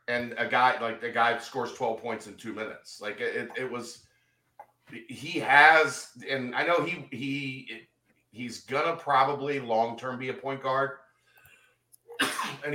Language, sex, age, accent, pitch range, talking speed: English, male, 40-59, American, 115-155 Hz, 155 wpm